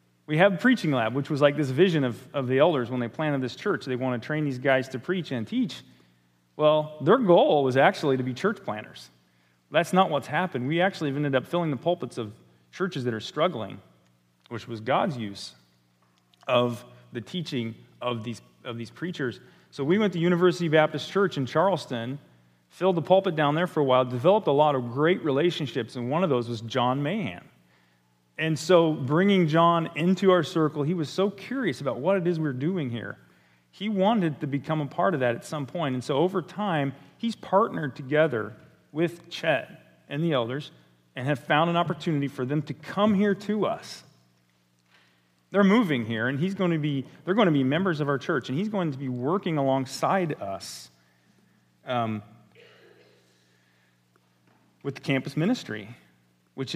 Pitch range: 115-170 Hz